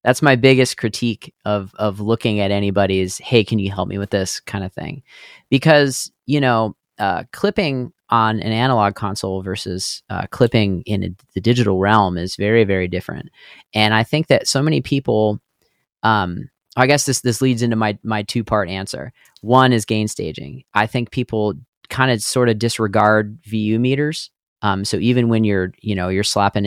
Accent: American